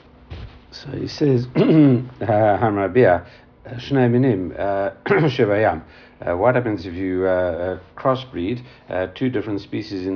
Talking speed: 90 wpm